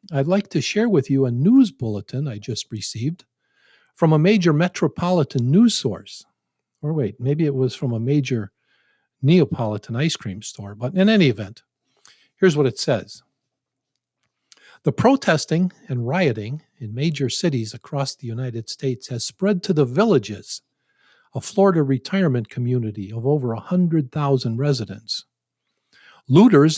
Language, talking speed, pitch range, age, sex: English, 145 wpm, 125-170 Hz, 50-69, male